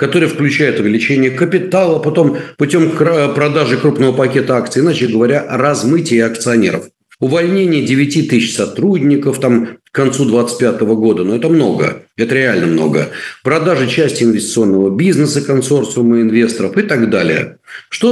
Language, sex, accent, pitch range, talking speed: Russian, male, native, 125-165 Hz, 130 wpm